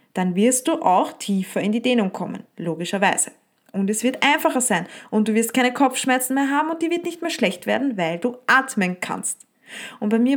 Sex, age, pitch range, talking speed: female, 20-39, 205-260 Hz, 210 wpm